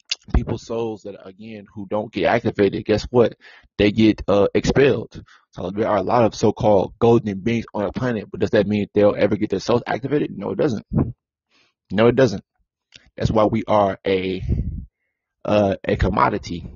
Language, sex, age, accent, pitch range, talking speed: English, male, 20-39, American, 100-115 Hz, 180 wpm